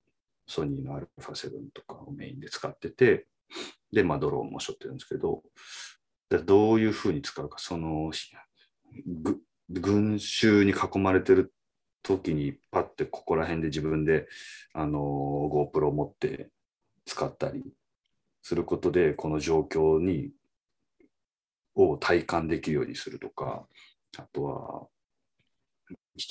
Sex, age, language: male, 30-49, Japanese